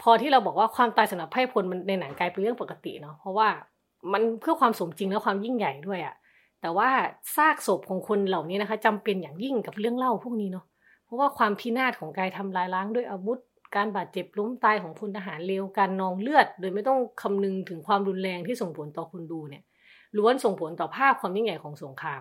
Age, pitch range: 20-39, 170-220 Hz